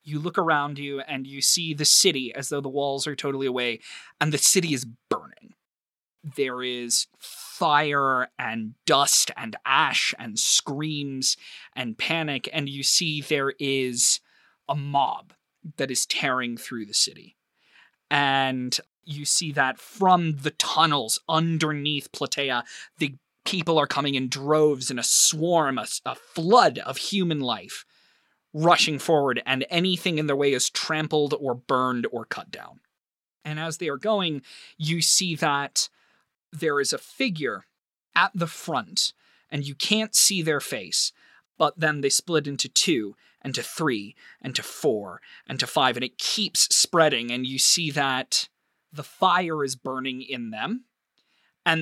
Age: 20-39